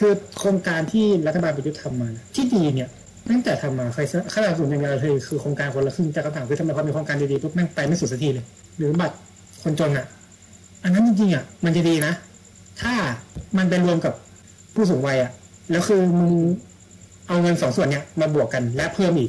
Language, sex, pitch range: Thai, male, 135-180 Hz